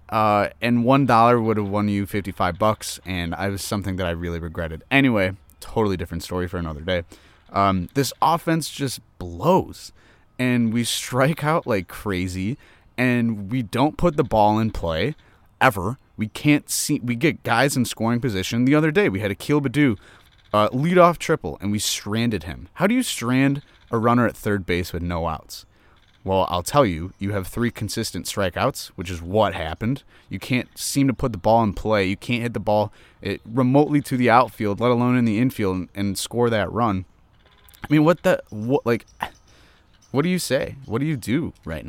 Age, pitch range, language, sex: 30-49, 95-125 Hz, English, male